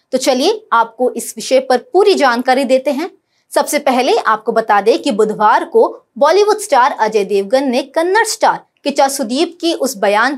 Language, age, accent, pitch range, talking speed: Hindi, 20-39, native, 225-300 Hz, 175 wpm